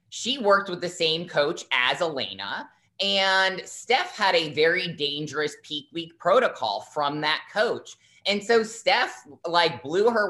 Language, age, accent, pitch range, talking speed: English, 20-39, American, 150-195 Hz, 150 wpm